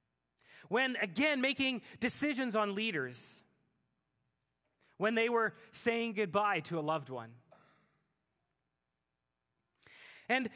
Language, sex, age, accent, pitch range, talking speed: English, male, 30-49, American, 180-265 Hz, 90 wpm